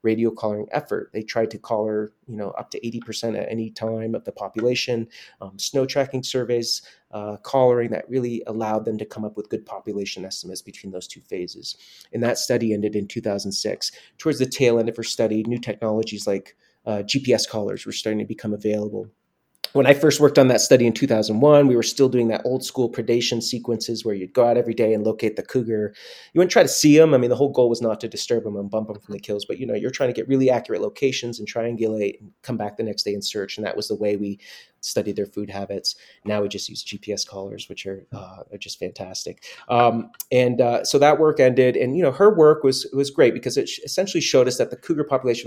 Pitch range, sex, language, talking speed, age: 105-130 Hz, male, English, 240 wpm, 30-49